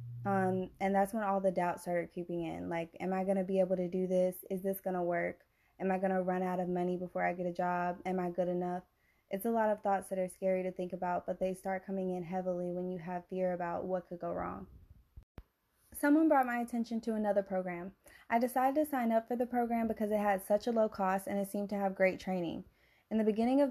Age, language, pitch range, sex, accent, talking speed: 20-39, English, 185-205 Hz, female, American, 255 wpm